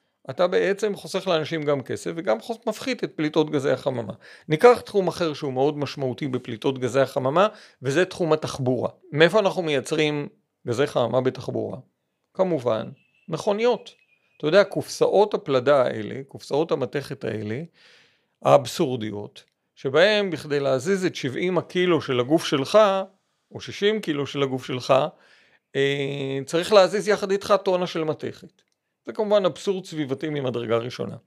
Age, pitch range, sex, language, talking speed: 50-69, 135-200 Hz, male, Hebrew, 135 wpm